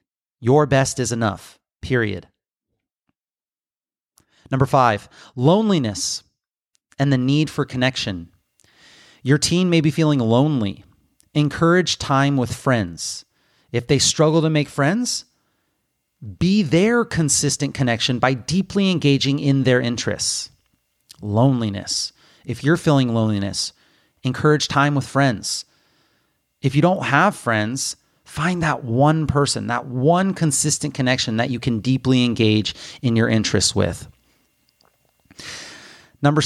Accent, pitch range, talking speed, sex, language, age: American, 115-150 Hz, 115 wpm, male, English, 30-49